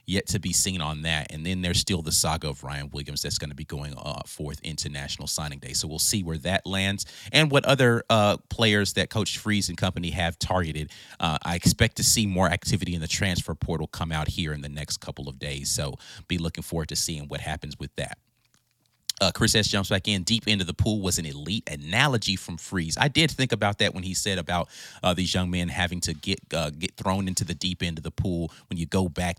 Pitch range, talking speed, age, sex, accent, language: 80-100 Hz, 245 wpm, 30-49, male, American, English